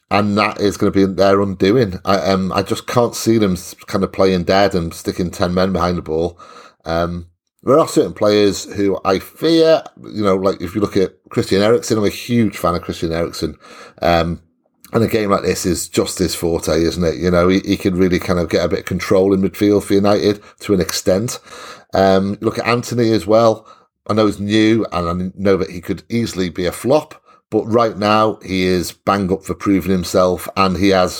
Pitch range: 90-105 Hz